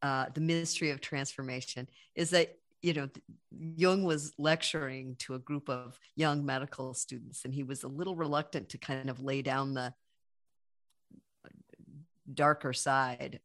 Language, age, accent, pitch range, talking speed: English, 50-69, American, 135-170 Hz, 145 wpm